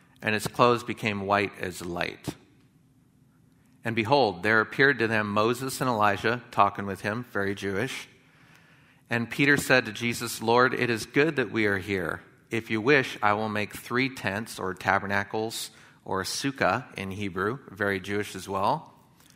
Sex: male